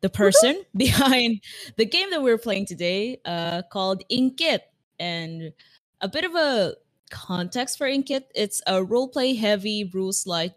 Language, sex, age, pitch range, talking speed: English, female, 20-39, 165-225 Hz, 150 wpm